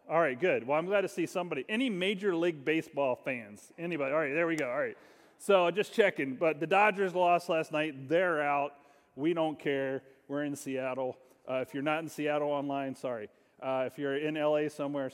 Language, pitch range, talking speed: English, 140-175 Hz, 210 wpm